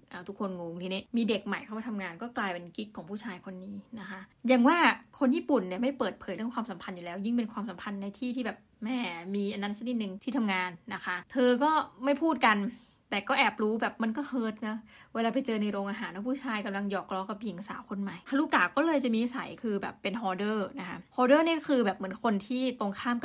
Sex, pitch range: female, 200-250 Hz